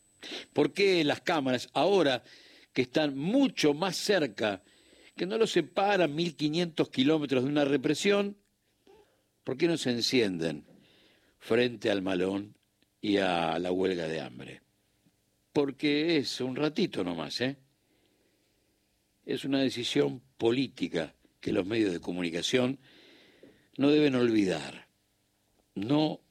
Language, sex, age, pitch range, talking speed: Spanish, male, 60-79, 100-150 Hz, 120 wpm